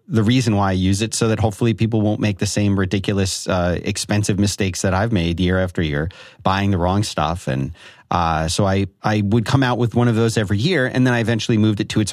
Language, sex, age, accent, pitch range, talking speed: English, male, 30-49, American, 100-125 Hz, 245 wpm